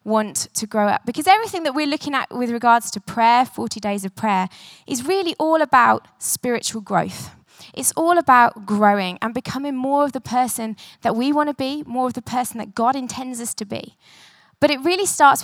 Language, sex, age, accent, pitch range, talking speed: English, female, 20-39, British, 220-280 Hz, 205 wpm